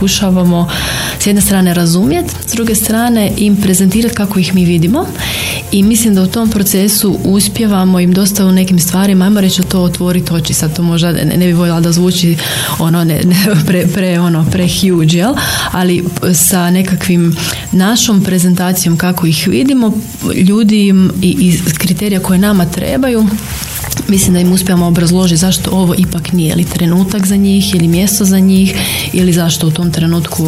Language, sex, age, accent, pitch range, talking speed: Croatian, female, 30-49, native, 170-195 Hz, 160 wpm